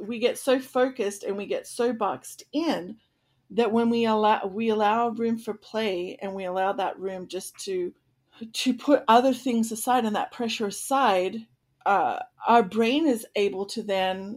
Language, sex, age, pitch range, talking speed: English, female, 40-59, 195-240 Hz, 175 wpm